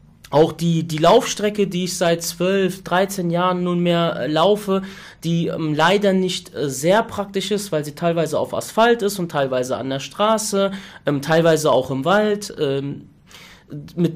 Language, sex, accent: German, male, German